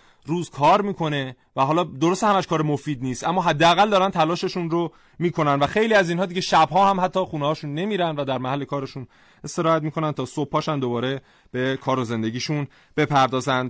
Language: Persian